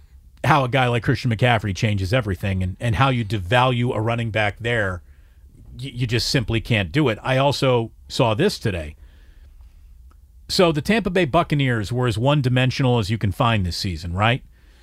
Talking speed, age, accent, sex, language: 175 wpm, 40-59, American, male, English